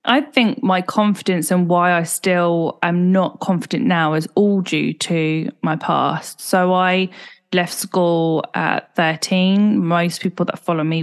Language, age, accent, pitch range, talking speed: English, 10-29, British, 170-195 Hz, 160 wpm